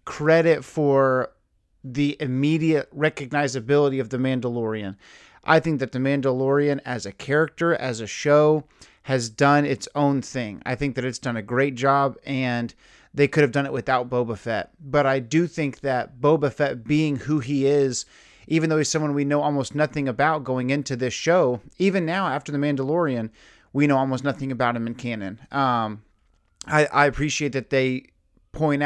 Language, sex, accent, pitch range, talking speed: English, male, American, 130-150 Hz, 175 wpm